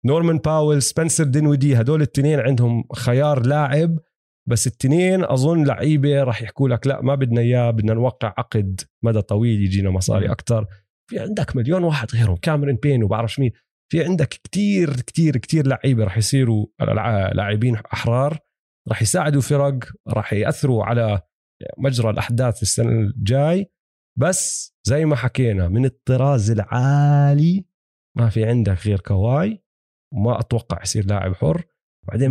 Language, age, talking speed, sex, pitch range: Arabic, 30-49, 145 wpm, male, 110-140 Hz